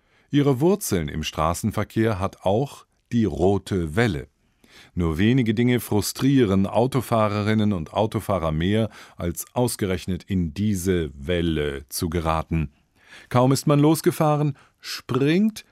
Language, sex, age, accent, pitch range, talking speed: German, male, 50-69, German, 85-130 Hz, 110 wpm